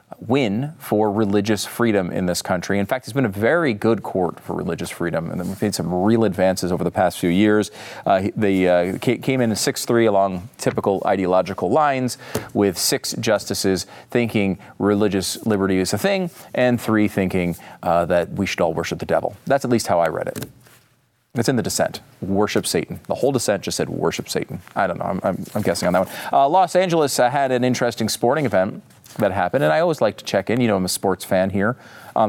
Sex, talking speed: male, 215 wpm